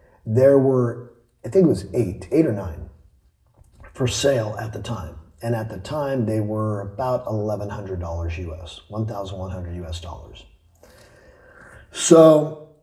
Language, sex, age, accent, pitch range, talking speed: German, male, 40-59, American, 95-130 Hz, 130 wpm